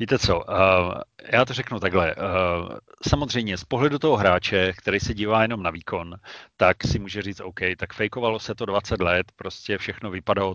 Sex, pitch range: male, 95-110 Hz